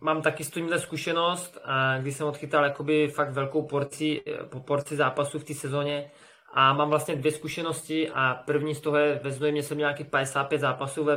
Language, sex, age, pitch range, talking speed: Czech, male, 20-39, 140-150 Hz, 190 wpm